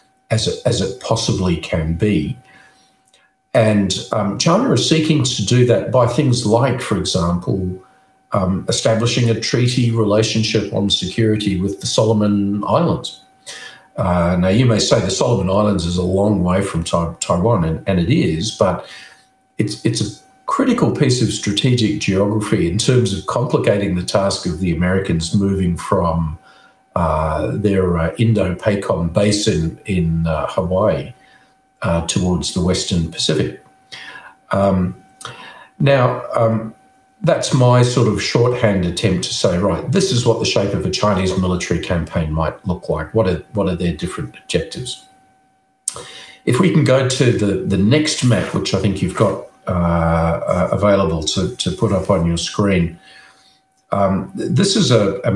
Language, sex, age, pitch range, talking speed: English, male, 50-69, 90-120 Hz, 155 wpm